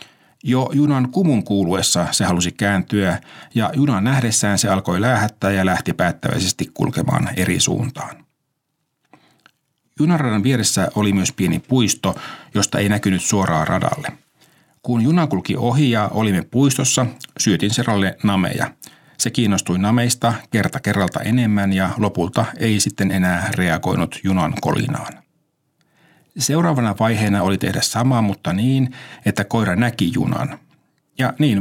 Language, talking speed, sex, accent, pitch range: Finnish, 130 wpm, male, native, 100-130 Hz